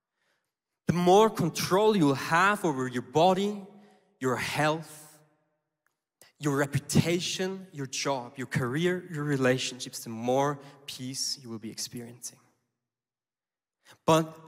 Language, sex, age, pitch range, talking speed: English, male, 20-39, 135-190 Hz, 110 wpm